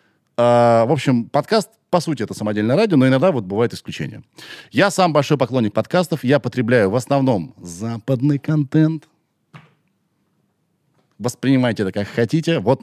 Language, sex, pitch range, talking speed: Russian, male, 110-150 Hz, 140 wpm